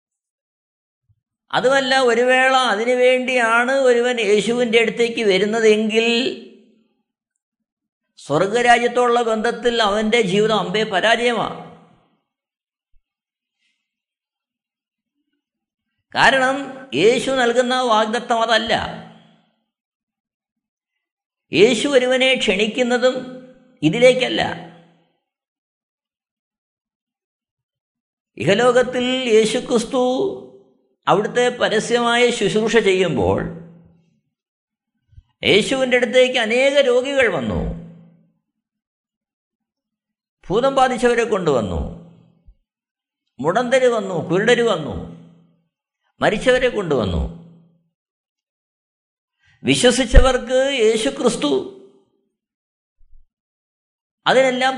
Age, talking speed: 50-69, 50 wpm